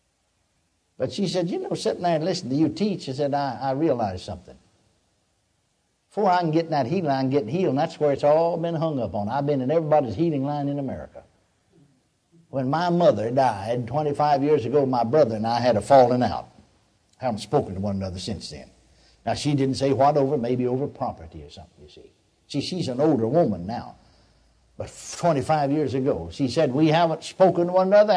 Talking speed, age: 210 wpm, 60-79